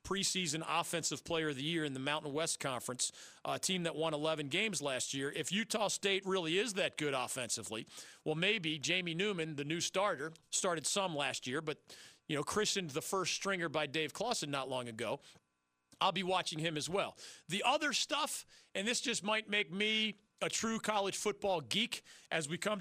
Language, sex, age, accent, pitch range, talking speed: English, male, 40-59, American, 145-185 Hz, 195 wpm